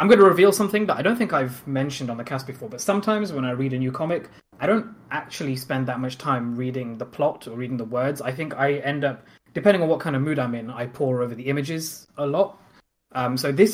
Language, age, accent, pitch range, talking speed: English, 20-39, British, 125-145 Hz, 260 wpm